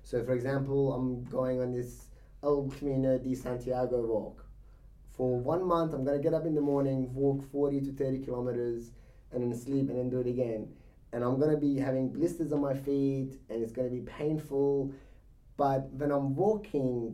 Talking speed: 195 wpm